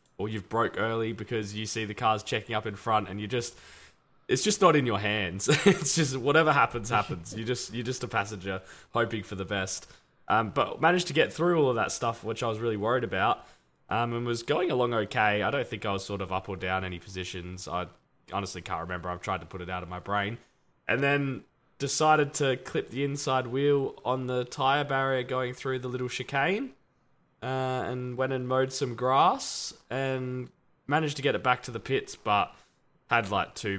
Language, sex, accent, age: English, male, Australian, 20-39